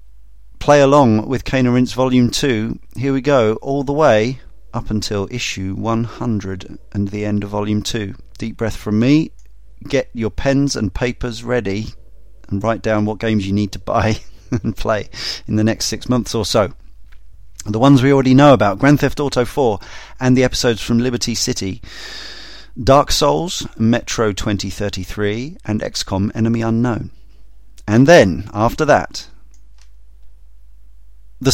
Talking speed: 150 wpm